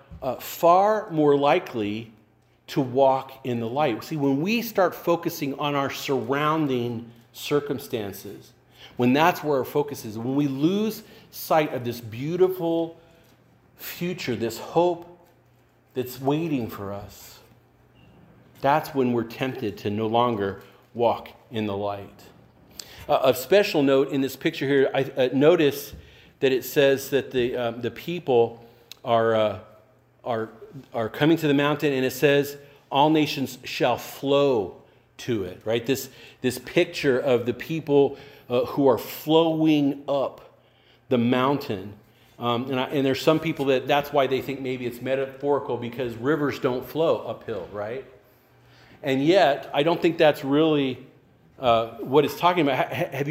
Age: 40-59